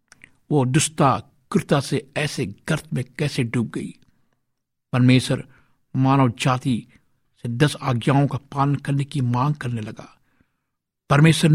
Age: 60-79